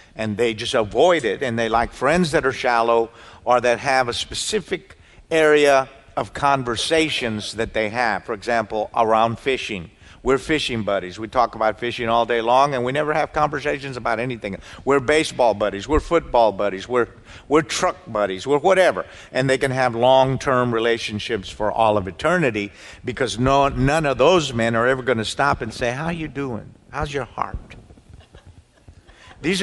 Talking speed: 175 wpm